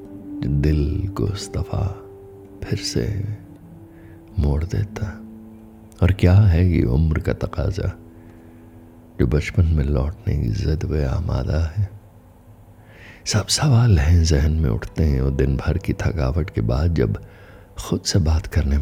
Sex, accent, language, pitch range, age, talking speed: male, native, Hindi, 80-105 Hz, 50-69, 135 wpm